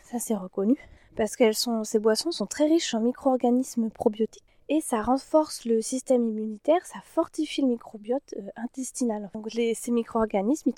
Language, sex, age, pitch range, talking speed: French, female, 20-39, 215-265 Hz, 165 wpm